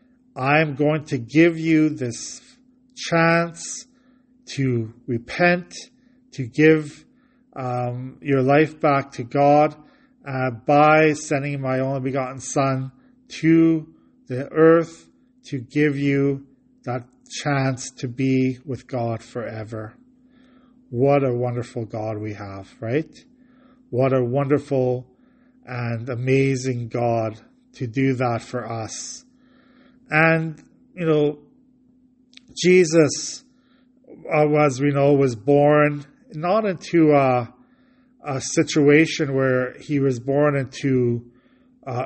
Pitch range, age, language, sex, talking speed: 130-200 Hz, 40-59, English, male, 105 wpm